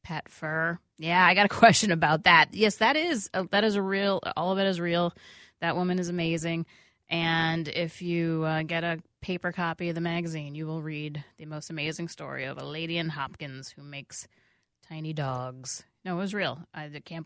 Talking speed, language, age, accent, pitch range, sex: 205 wpm, English, 30-49, American, 160-200 Hz, female